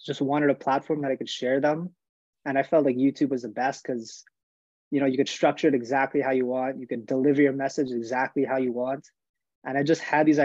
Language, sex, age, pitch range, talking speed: English, male, 20-39, 125-145 Hz, 240 wpm